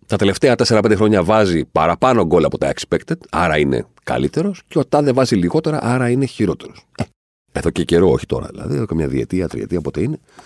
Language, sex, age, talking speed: Greek, male, 50-69, 200 wpm